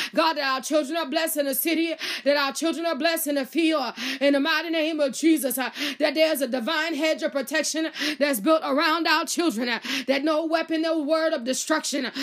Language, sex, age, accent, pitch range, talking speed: English, female, 20-39, American, 260-325 Hz, 205 wpm